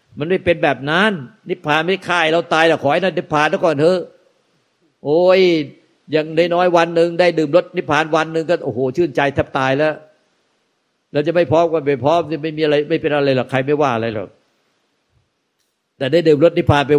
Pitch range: 125-160 Hz